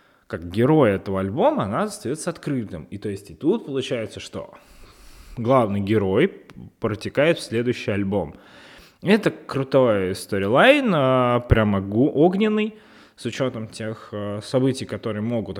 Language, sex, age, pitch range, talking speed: Russian, male, 20-39, 100-135 Hz, 120 wpm